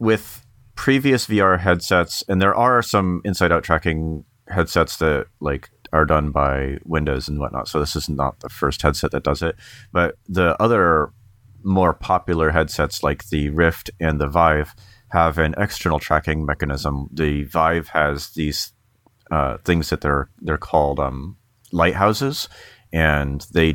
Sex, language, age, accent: male, English, 30-49, American